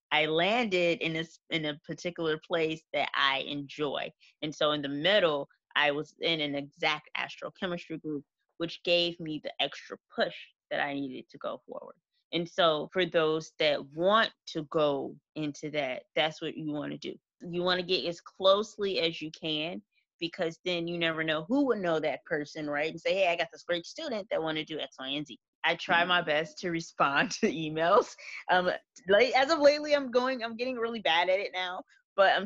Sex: female